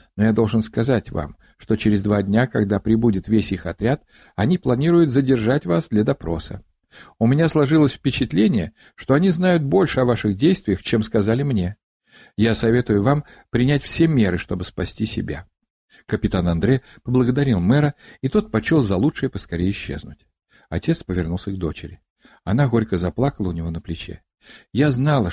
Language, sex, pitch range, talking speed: Russian, male, 90-135 Hz, 160 wpm